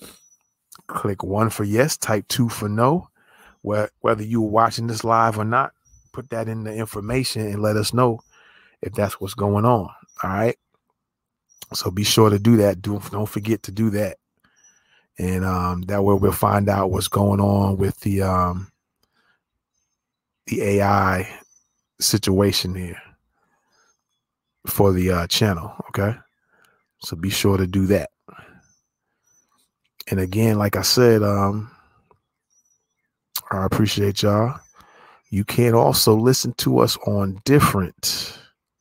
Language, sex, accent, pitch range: English, male, American, 100-115 Hz